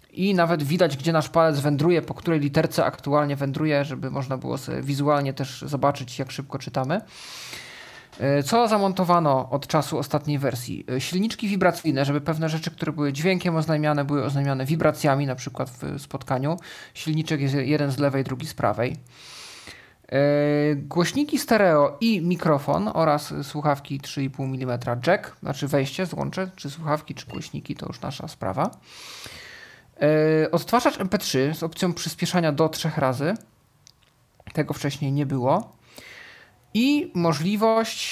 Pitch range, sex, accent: 140-175 Hz, male, native